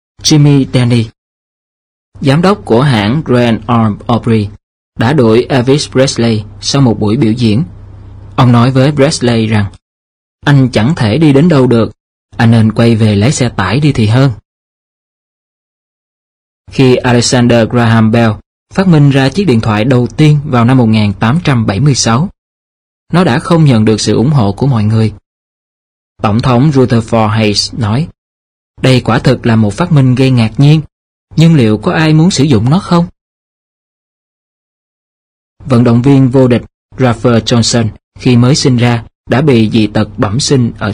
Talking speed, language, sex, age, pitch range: 160 wpm, Vietnamese, male, 20-39, 105-135 Hz